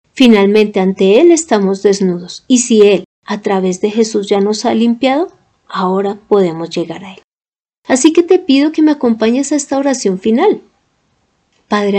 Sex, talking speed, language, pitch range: female, 165 wpm, Spanish, 195-255 Hz